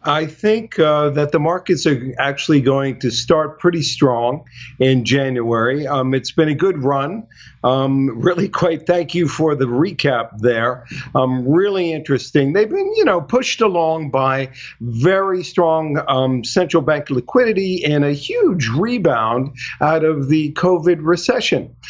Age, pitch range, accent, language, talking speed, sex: 50-69, 140-185 Hz, American, English, 150 wpm, male